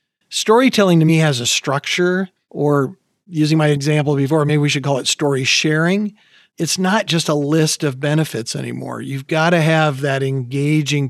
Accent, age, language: American, 40-59, English